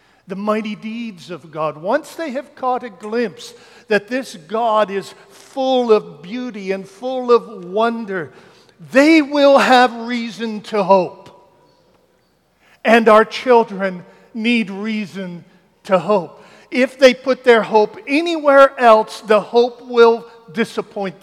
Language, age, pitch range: English, 50-69, 150-225 Hz